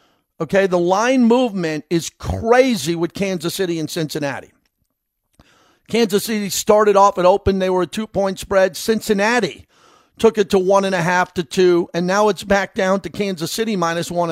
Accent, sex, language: American, male, English